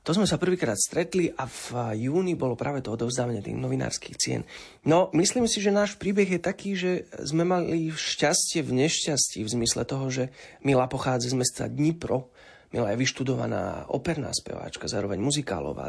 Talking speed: 170 wpm